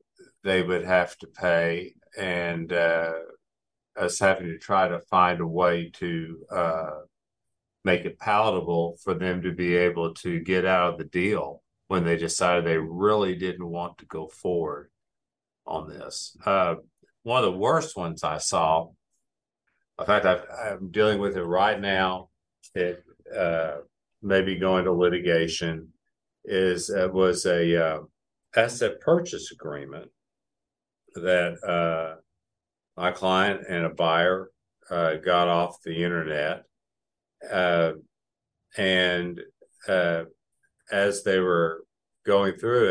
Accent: American